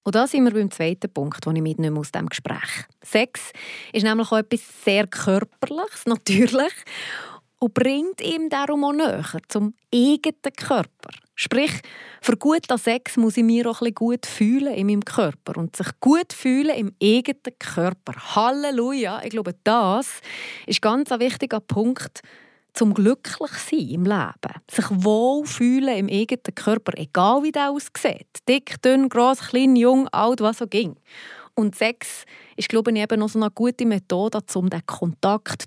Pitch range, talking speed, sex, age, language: 205-265 Hz, 165 wpm, female, 30-49, German